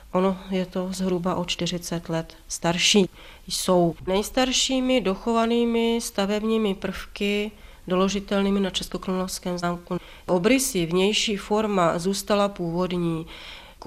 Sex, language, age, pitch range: female, Czech, 30-49, 180-205 Hz